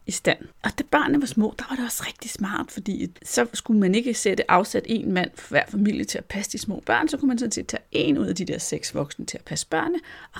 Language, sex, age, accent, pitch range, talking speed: Danish, female, 30-49, native, 180-245 Hz, 270 wpm